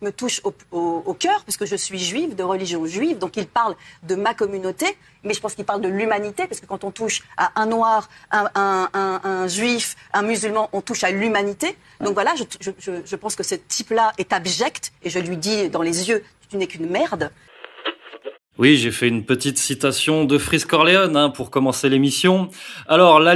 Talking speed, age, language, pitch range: 220 wpm, 40-59, French, 140-195 Hz